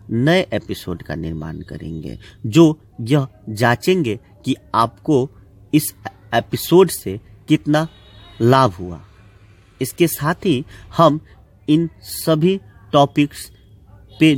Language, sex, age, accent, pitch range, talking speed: Hindi, male, 50-69, native, 100-155 Hz, 100 wpm